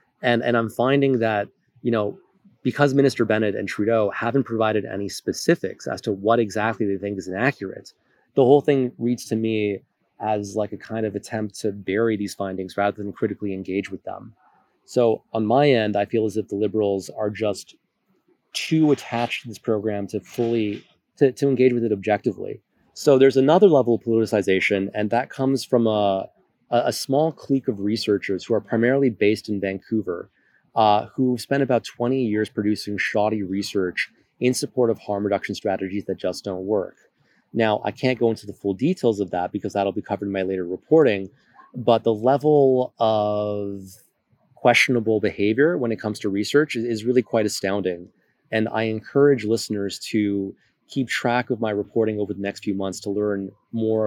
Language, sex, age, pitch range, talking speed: English, male, 30-49, 100-120 Hz, 180 wpm